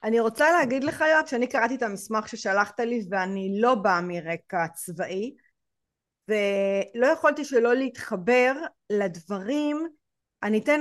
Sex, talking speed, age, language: female, 130 wpm, 30-49, Hebrew